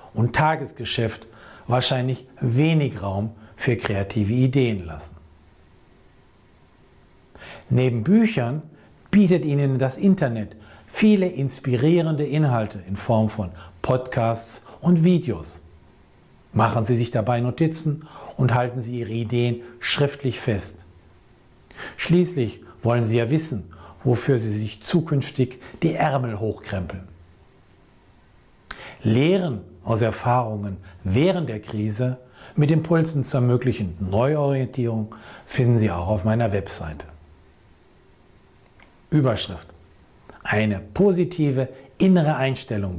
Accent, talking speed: German, 100 wpm